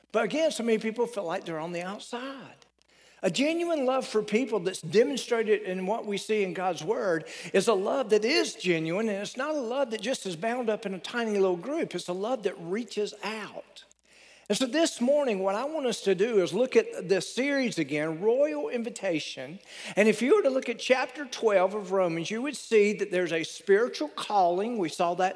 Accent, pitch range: American, 190-260 Hz